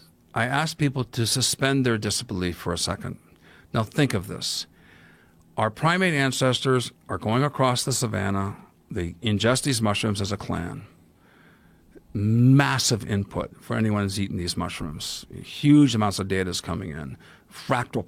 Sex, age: male, 50-69